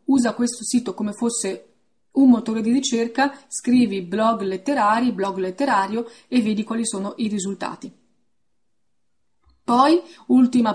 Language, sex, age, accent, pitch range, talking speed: Italian, female, 30-49, native, 210-255 Hz, 125 wpm